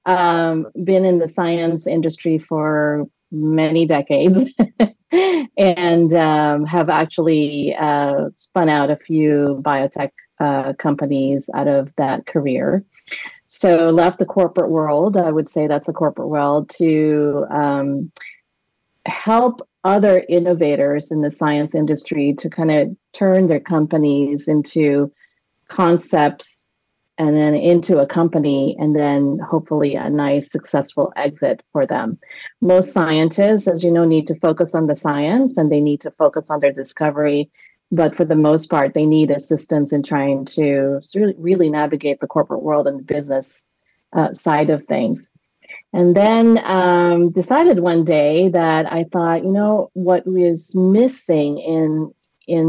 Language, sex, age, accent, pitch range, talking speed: English, female, 30-49, American, 150-180 Hz, 145 wpm